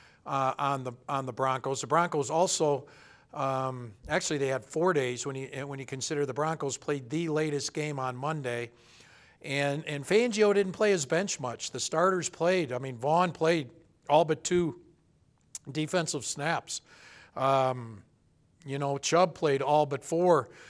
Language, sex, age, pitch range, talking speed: English, male, 60-79, 135-165 Hz, 160 wpm